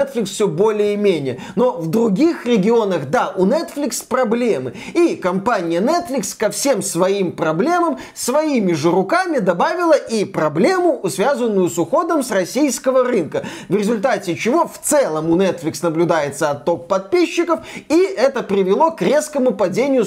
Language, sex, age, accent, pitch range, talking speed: Russian, male, 20-39, native, 200-255 Hz, 140 wpm